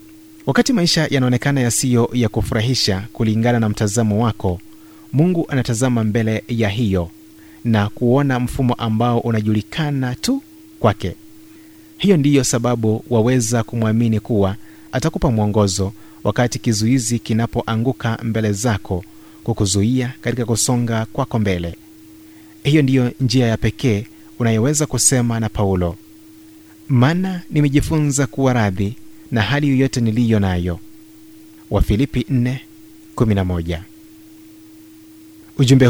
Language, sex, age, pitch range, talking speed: Swahili, male, 30-49, 105-145 Hz, 100 wpm